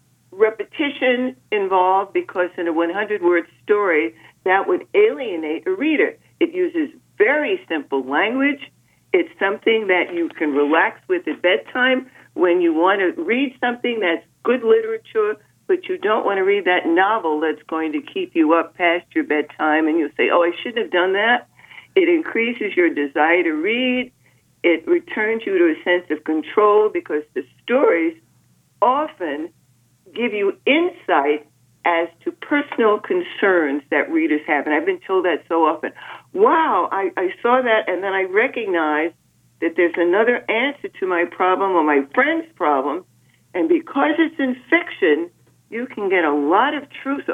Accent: American